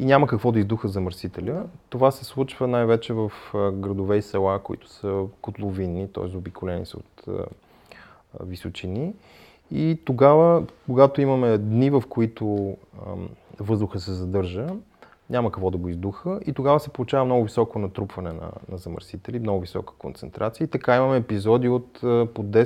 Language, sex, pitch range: Bulgarian, male, 100-125 Hz